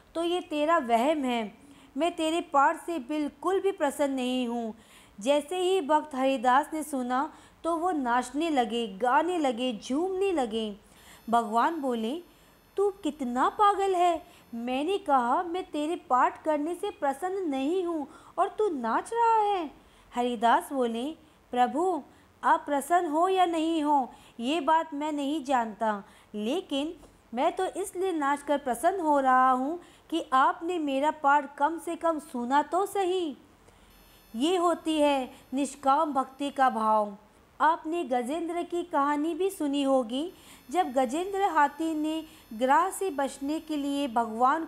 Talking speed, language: 145 wpm, Hindi